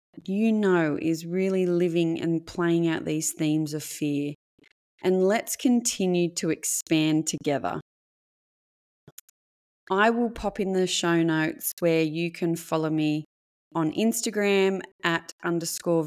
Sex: female